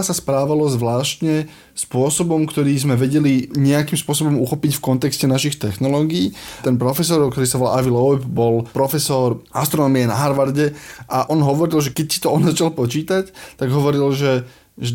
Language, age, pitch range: Slovak, 20-39, 130-160 Hz